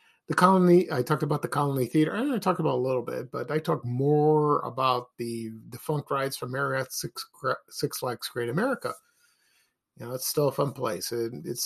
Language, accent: English, American